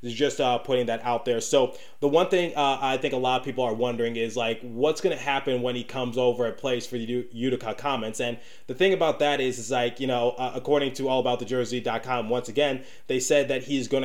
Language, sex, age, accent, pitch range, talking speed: English, male, 20-39, American, 125-145 Hz, 250 wpm